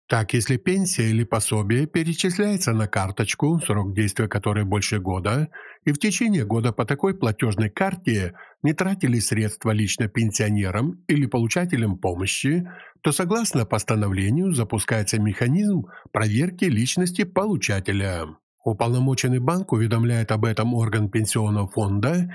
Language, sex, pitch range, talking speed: Ukrainian, male, 105-155 Hz, 120 wpm